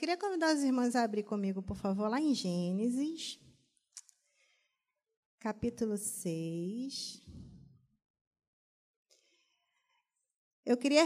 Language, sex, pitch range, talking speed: Portuguese, female, 215-280 Hz, 85 wpm